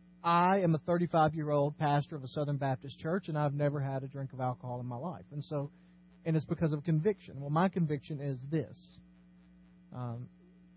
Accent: American